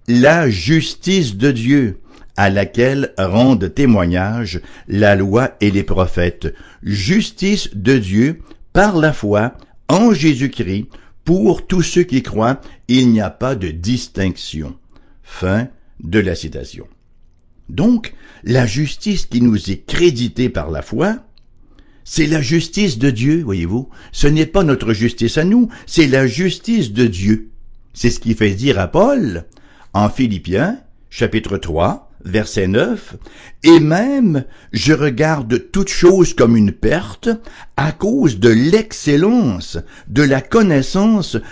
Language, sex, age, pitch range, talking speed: English, male, 60-79, 105-170 Hz, 135 wpm